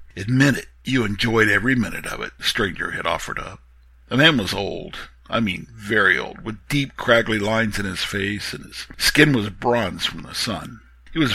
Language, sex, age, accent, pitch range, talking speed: English, male, 60-79, American, 90-135 Hz, 200 wpm